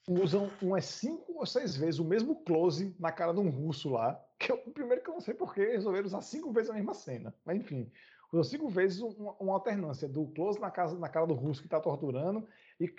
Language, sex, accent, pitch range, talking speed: Portuguese, male, Brazilian, 155-240 Hz, 230 wpm